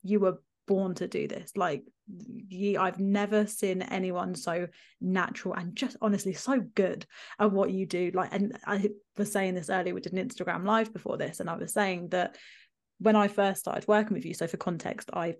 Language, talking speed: English, 205 wpm